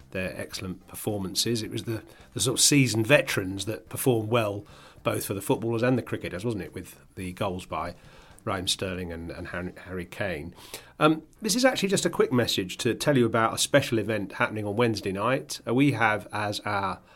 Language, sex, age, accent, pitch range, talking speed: English, male, 40-59, British, 100-125 Hz, 195 wpm